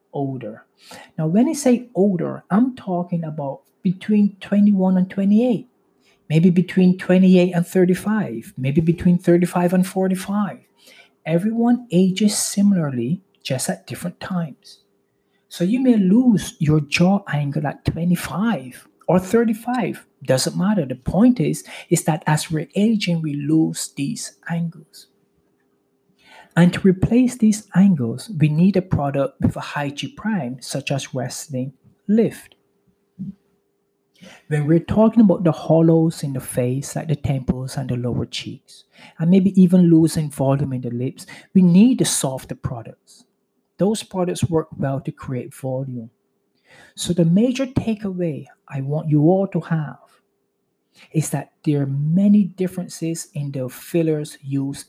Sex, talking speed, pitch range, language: male, 145 wpm, 145-195 Hz, English